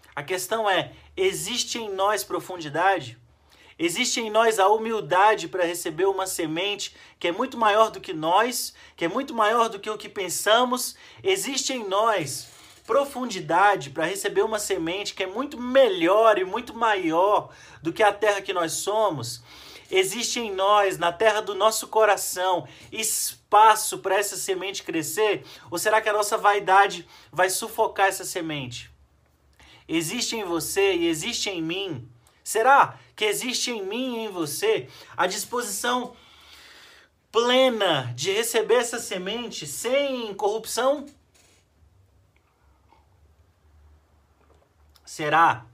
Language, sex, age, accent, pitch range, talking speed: Portuguese, male, 30-49, Brazilian, 160-225 Hz, 135 wpm